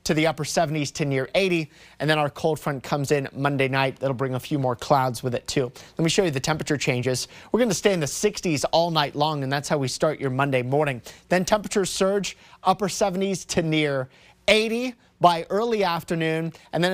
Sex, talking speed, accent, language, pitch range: male, 220 wpm, American, English, 140-180 Hz